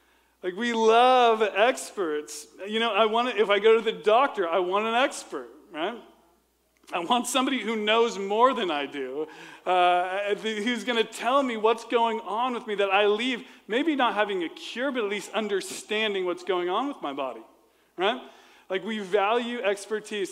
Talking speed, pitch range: 190 wpm, 195-255 Hz